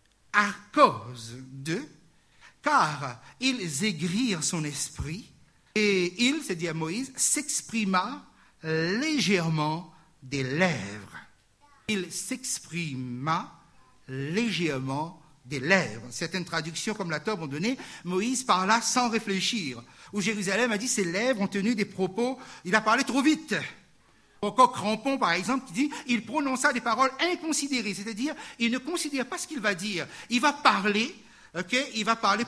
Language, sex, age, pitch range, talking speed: French, male, 60-79, 175-245 Hz, 150 wpm